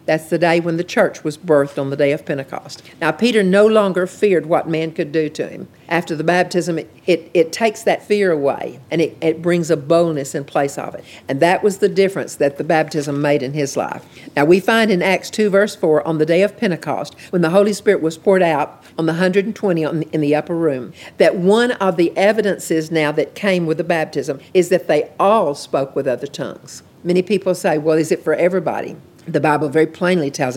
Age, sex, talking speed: 50-69, female, 225 wpm